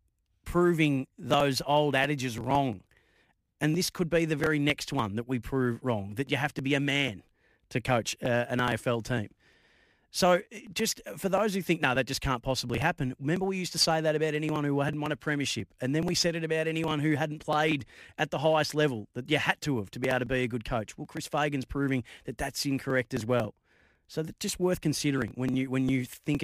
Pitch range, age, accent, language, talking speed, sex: 125-150 Hz, 30-49, Australian, English, 230 wpm, male